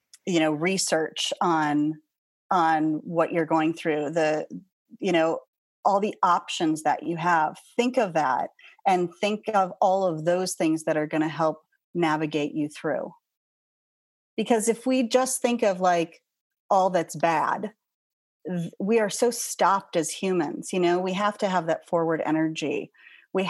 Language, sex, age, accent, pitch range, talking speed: English, female, 30-49, American, 160-210 Hz, 160 wpm